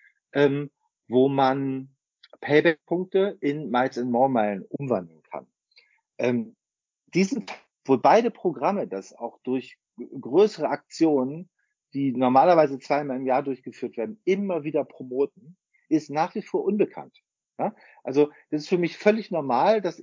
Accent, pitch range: German, 135-185 Hz